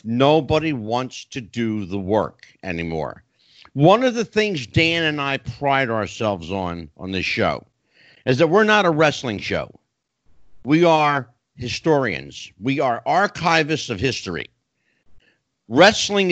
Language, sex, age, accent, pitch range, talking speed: English, male, 50-69, American, 120-170 Hz, 130 wpm